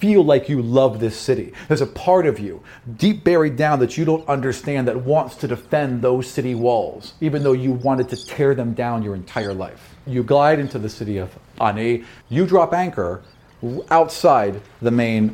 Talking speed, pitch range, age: 190 wpm, 115-155 Hz, 40-59